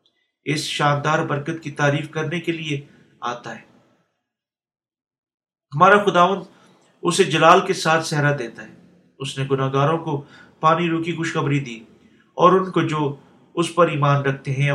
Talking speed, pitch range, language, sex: 145 wpm, 135-165 Hz, Urdu, male